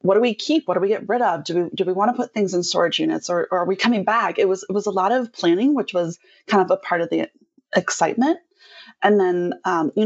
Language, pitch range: English, 180-260 Hz